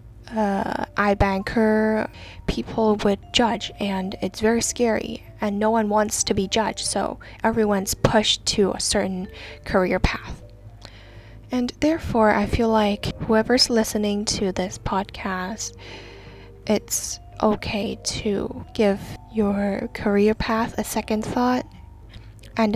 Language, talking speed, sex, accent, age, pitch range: English, 120 wpm, female, American, 10-29, 185-220 Hz